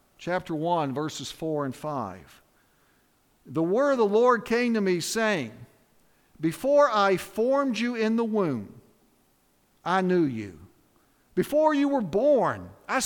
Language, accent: English, American